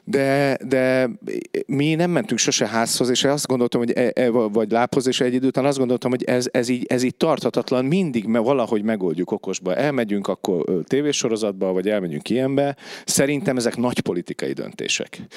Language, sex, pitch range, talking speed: Hungarian, male, 100-130 Hz, 170 wpm